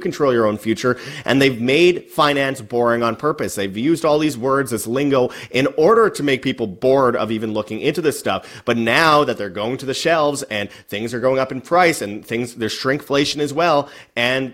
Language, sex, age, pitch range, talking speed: English, male, 30-49, 105-135 Hz, 215 wpm